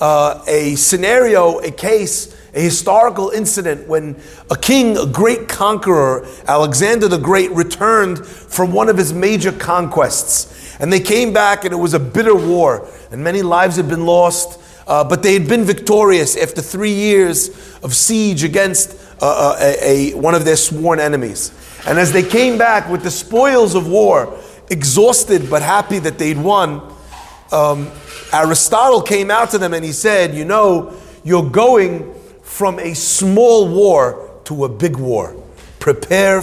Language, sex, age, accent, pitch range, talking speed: English, male, 30-49, American, 150-210 Hz, 160 wpm